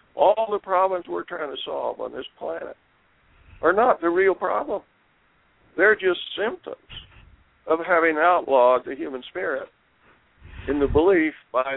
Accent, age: American, 60-79